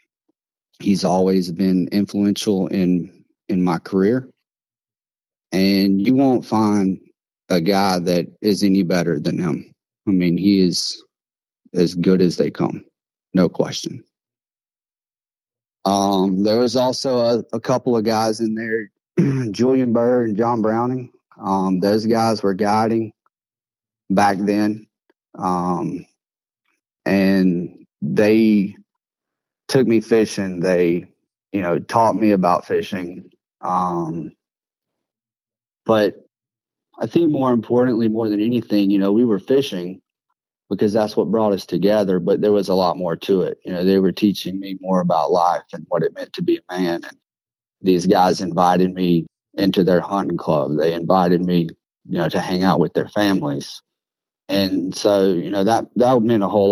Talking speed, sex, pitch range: 150 wpm, male, 95-115 Hz